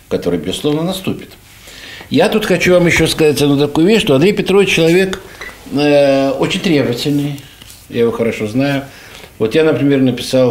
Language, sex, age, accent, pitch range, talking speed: Russian, male, 60-79, native, 100-145 Hz, 155 wpm